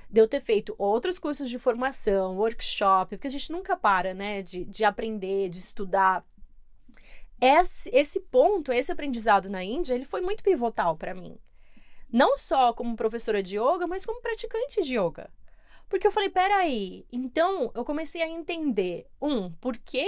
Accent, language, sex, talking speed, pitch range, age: Brazilian, Portuguese, female, 165 wpm, 210-345 Hz, 20-39